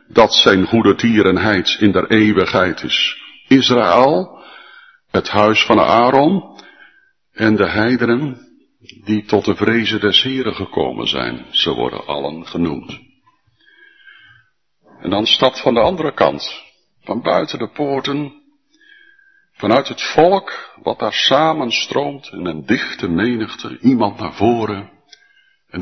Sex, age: male, 60-79